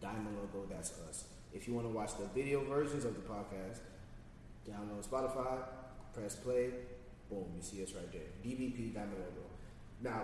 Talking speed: 170 wpm